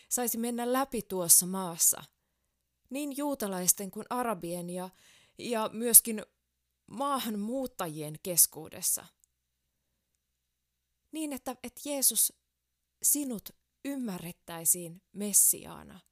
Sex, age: female, 20-39